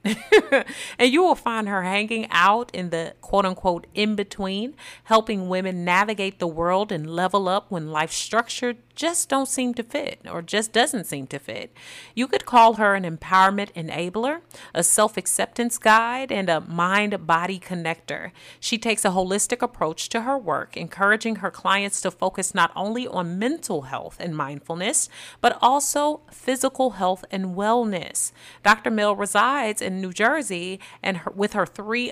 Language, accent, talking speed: English, American, 165 wpm